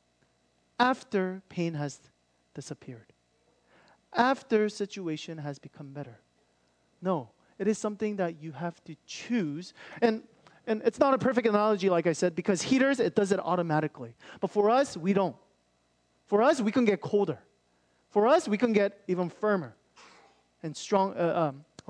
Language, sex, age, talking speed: English, male, 30-49, 150 wpm